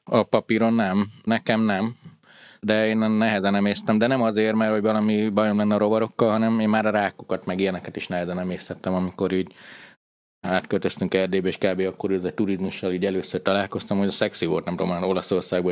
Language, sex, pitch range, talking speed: Hungarian, male, 90-105 Hz, 185 wpm